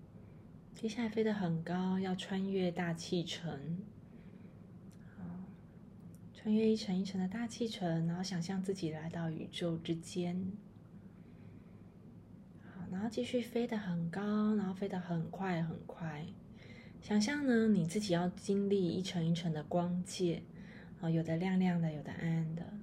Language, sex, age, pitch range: Chinese, female, 20-39, 170-200 Hz